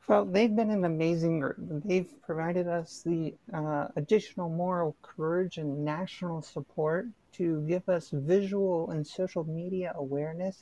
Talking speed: 135 wpm